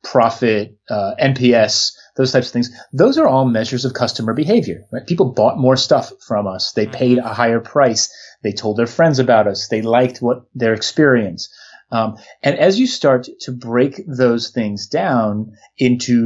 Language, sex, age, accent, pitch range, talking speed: English, male, 30-49, American, 110-135 Hz, 175 wpm